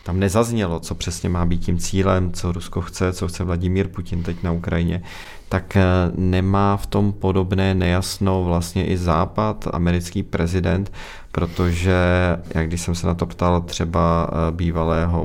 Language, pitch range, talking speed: Czech, 80-95 Hz, 155 wpm